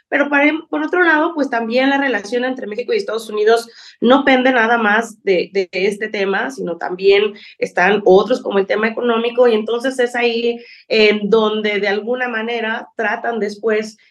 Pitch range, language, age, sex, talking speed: 210-265 Hz, Spanish, 30-49, female, 170 wpm